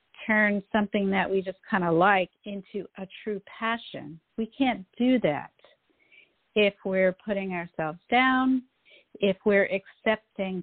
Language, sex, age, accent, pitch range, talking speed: English, female, 50-69, American, 185-225 Hz, 135 wpm